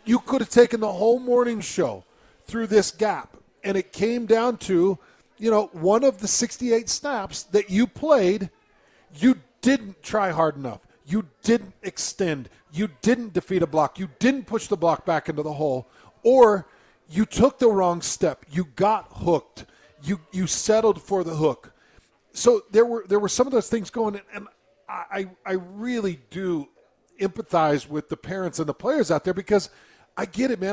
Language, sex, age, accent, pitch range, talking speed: English, male, 40-59, American, 185-230 Hz, 180 wpm